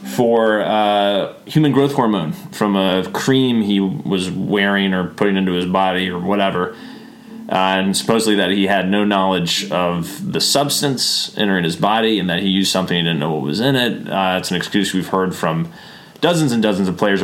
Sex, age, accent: male, 30-49, American